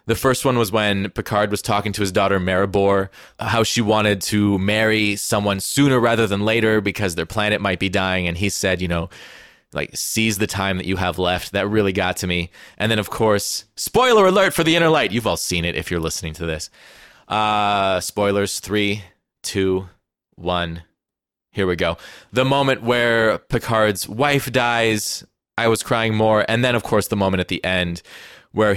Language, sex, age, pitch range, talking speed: English, male, 20-39, 95-120 Hz, 195 wpm